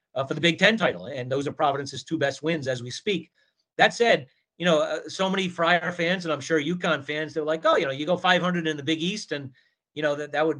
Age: 40-59